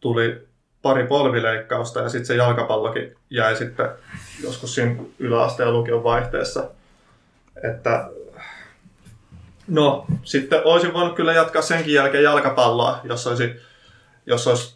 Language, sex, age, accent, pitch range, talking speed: Finnish, male, 20-39, native, 120-150 Hz, 115 wpm